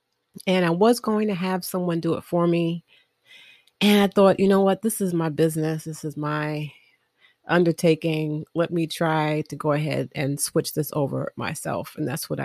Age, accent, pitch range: 30-49, American, 155-195 Hz